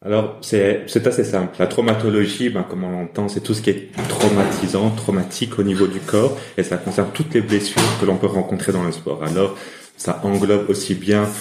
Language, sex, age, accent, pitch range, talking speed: French, male, 30-49, French, 85-105 Hz, 210 wpm